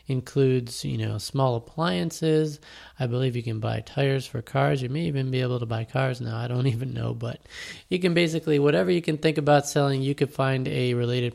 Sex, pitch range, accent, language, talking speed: male, 125-145 Hz, American, English, 215 wpm